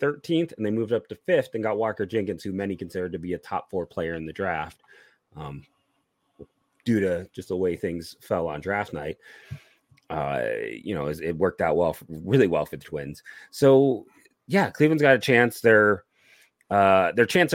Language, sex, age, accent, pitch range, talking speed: English, male, 30-49, American, 95-125 Hz, 190 wpm